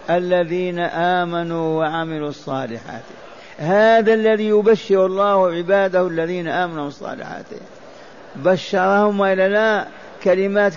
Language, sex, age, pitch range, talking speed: Arabic, male, 50-69, 175-200 Hz, 85 wpm